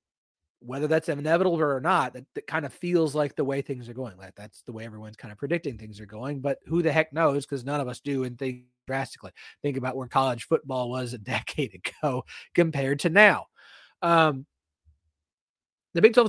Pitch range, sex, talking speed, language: 130-185 Hz, male, 205 wpm, English